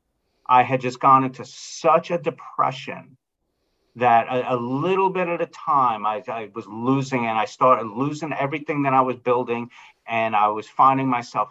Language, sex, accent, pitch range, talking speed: English, male, American, 120-140 Hz, 175 wpm